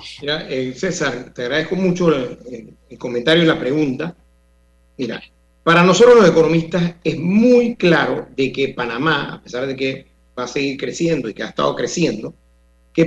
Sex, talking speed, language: male, 170 wpm, Spanish